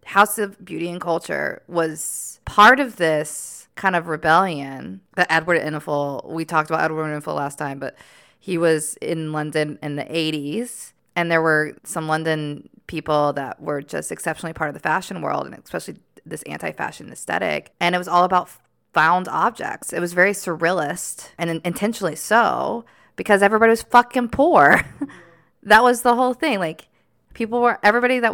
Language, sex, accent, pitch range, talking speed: English, female, American, 155-195 Hz, 170 wpm